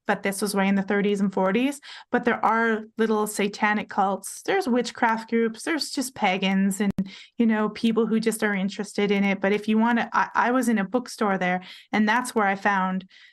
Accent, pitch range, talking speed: American, 210-250 Hz, 205 wpm